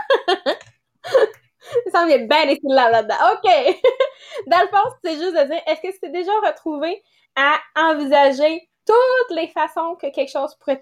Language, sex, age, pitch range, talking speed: English, female, 20-39, 240-320 Hz, 150 wpm